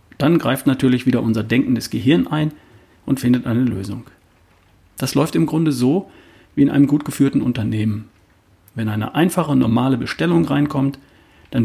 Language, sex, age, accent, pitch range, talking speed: German, male, 40-59, German, 110-135 Hz, 155 wpm